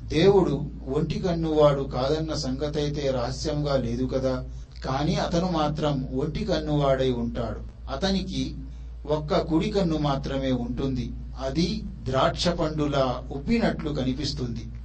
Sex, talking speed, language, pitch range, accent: male, 105 wpm, Telugu, 130-150 Hz, native